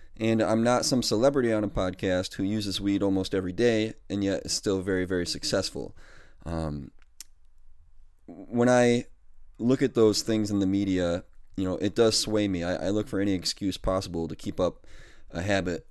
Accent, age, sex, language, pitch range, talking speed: American, 30-49, male, English, 90-115 Hz, 185 wpm